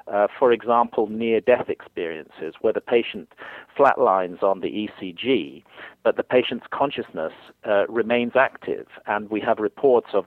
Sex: male